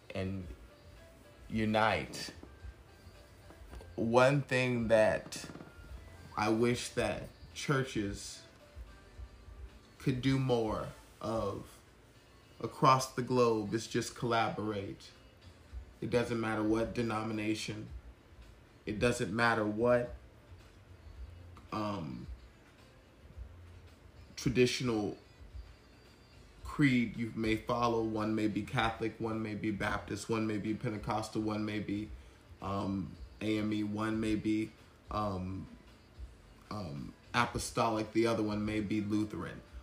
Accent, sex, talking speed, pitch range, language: American, male, 95 wpm, 95-115 Hz, English